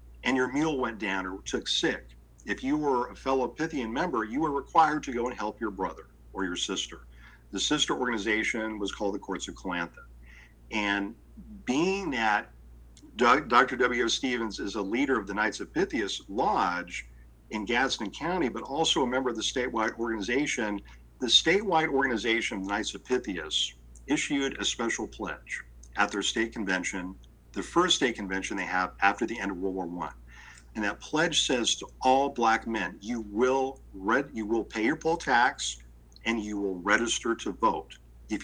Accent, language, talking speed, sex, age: American, English, 175 wpm, male, 50-69